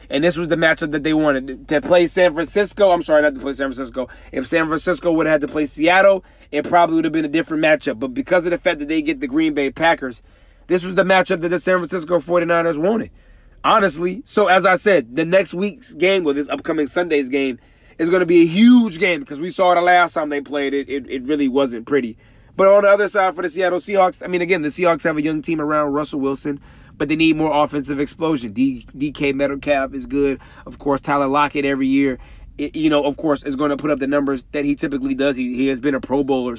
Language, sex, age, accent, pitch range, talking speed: English, male, 30-49, American, 140-180 Hz, 255 wpm